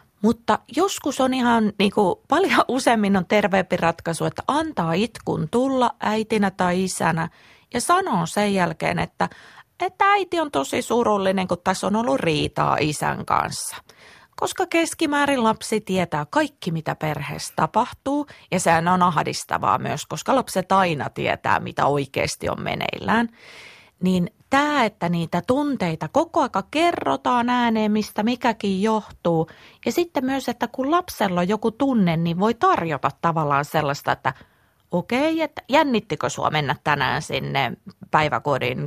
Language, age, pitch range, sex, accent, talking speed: Finnish, 30-49, 175-285 Hz, female, native, 140 wpm